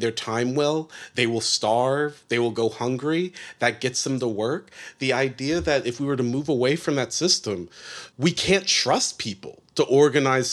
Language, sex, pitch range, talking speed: English, male, 115-145 Hz, 190 wpm